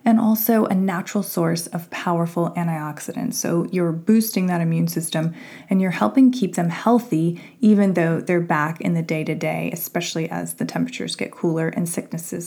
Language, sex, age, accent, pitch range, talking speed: English, female, 20-39, American, 165-215 Hz, 170 wpm